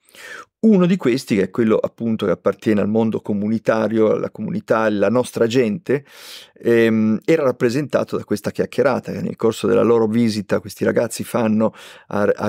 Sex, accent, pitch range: male, native, 105-120 Hz